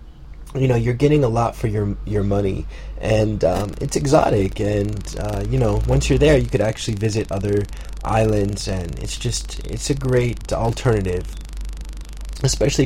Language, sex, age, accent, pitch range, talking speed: English, male, 20-39, American, 95-130 Hz, 165 wpm